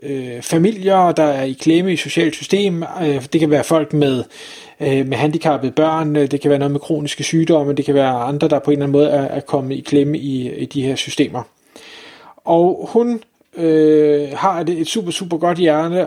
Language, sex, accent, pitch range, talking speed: Danish, male, native, 145-175 Hz, 195 wpm